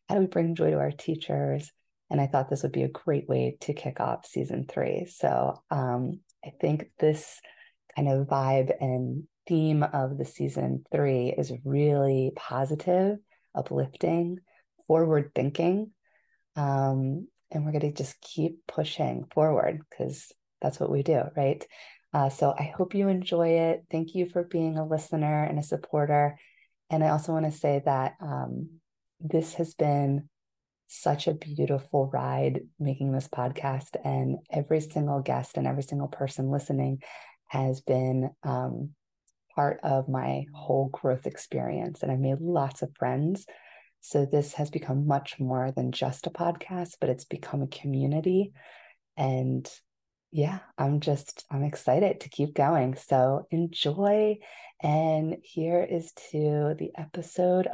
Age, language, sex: 30-49, English, female